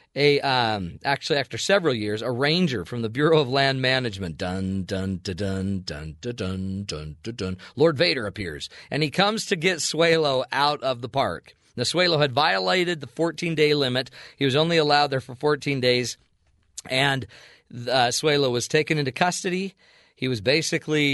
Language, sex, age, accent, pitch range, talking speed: English, male, 40-59, American, 115-150 Hz, 180 wpm